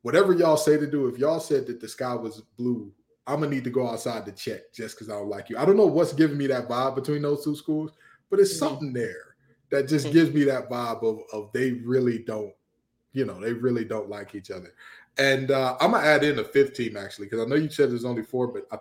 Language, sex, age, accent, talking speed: English, male, 20-39, American, 270 wpm